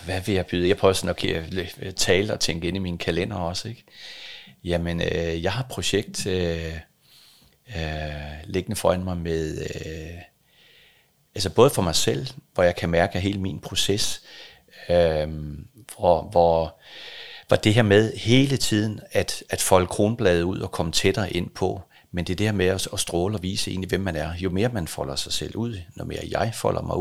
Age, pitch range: 40-59, 80-100 Hz